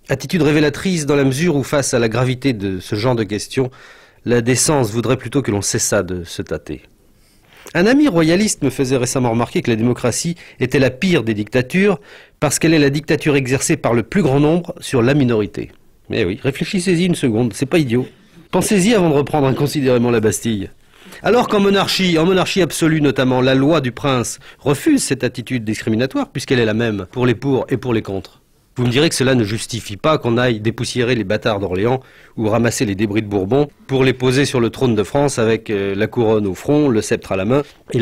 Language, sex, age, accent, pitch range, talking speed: English, male, 40-59, French, 115-155 Hz, 210 wpm